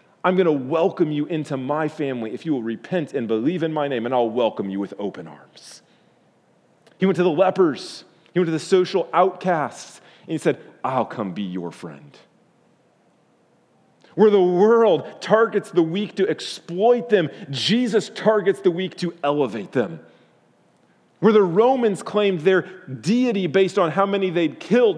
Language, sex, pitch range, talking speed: English, male, 160-215 Hz, 170 wpm